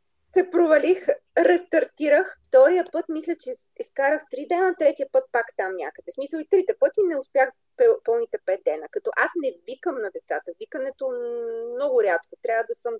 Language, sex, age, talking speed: Bulgarian, female, 30-49, 165 wpm